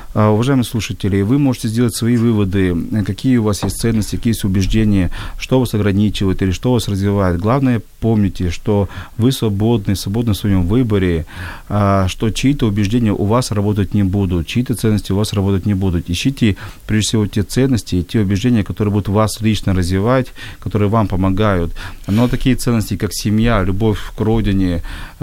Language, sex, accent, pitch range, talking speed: Ukrainian, male, native, 95-115 Hz, 160 wpm